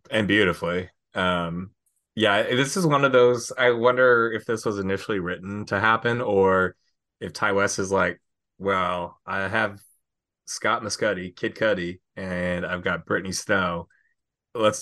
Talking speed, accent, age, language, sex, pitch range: 150 wpm, American, 20-39, English, male, 90-110 Hz